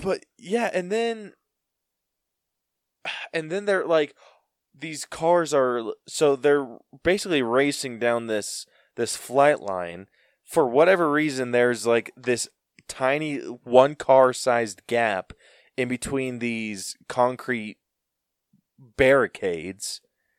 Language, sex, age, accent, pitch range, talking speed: English, male, 20-39, American, 115-150 Hz, 100 wpm